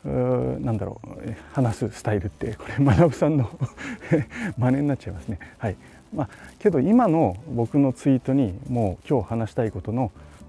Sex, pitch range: male, 95-130 Hz